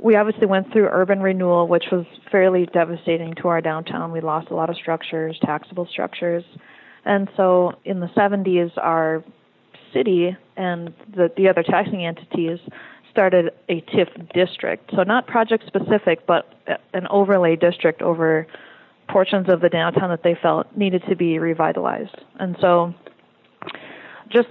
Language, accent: English, American